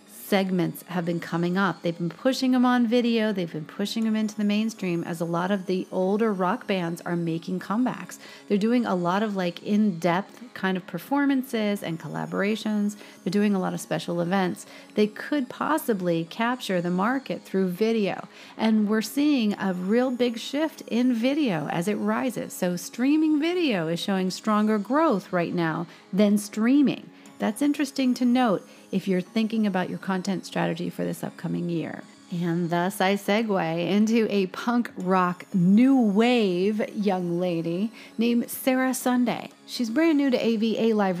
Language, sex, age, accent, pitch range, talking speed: English, female, 40-59, American, 180-240 Hz, 165 wpm